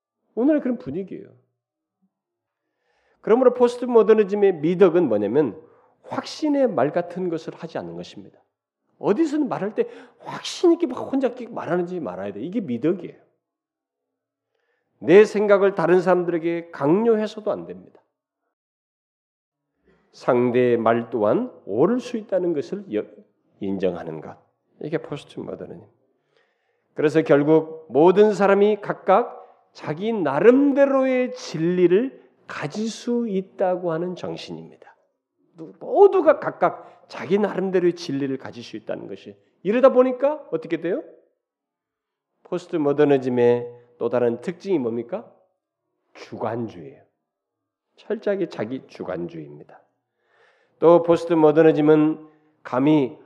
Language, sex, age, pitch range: Korean, male, 40-59, 155-230 Hz